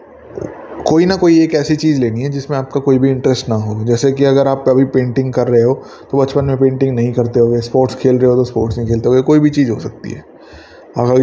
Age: 20-39